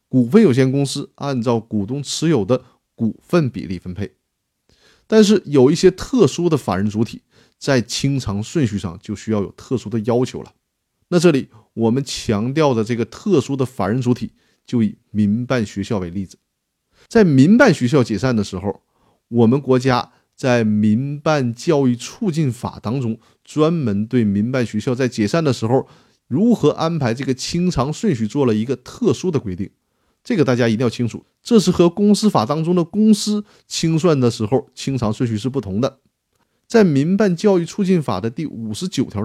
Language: Chinese